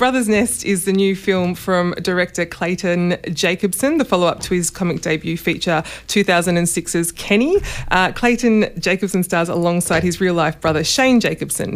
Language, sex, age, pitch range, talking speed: English, female, 20-39, 175-205 Hz, 160 wpm